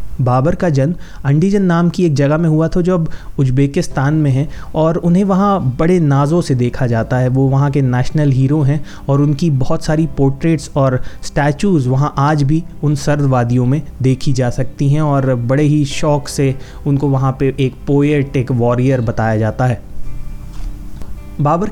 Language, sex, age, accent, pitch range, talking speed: Hindi, male, 30-49, native, 130-155 Hz, 175 wpm